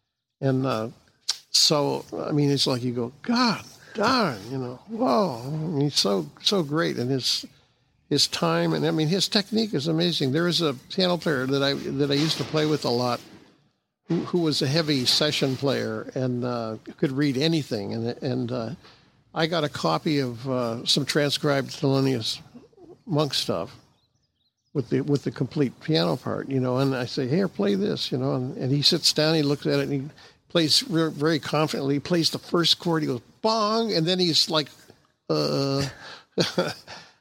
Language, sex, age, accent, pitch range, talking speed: English, male, 60-79, American, 130-165 Hz, 185 wpm